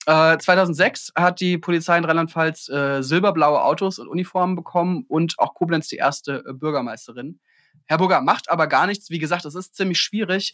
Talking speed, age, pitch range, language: 165 wpm, 20-39, 140-185 Hz, German